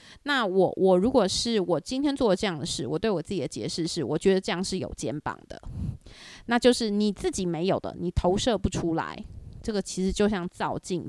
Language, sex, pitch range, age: Chinese, female, 180-235 Hz, 20-39